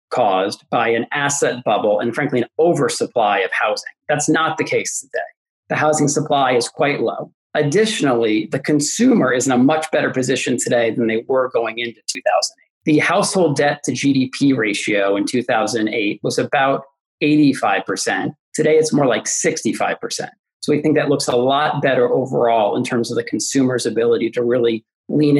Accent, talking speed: American, 170 wpm